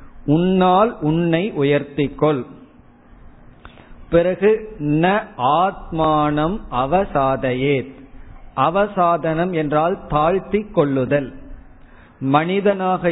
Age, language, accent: 50-69, Tamil, native